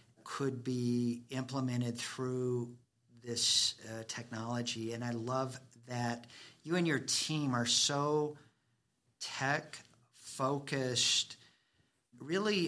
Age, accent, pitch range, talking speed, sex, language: 50-69, American, 120-150 Hz, 90 wpm, male, English